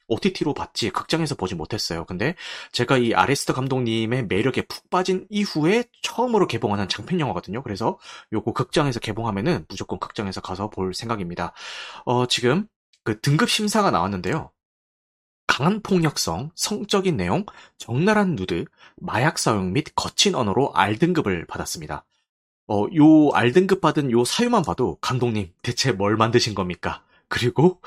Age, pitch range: 30-49, 105-170 Hz